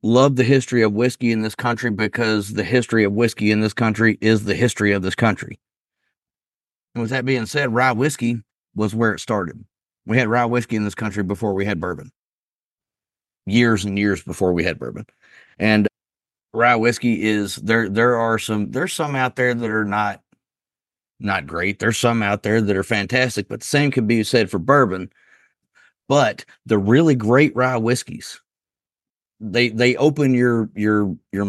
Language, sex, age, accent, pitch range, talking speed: English, male, 30-49, American, 100-120 Hz, 180 wpm